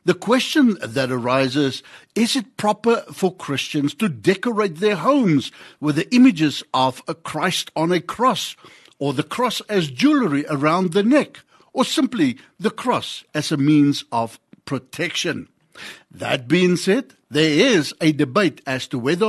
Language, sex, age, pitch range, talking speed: English, male, 60-79, 145-215 Hz, 150 wpm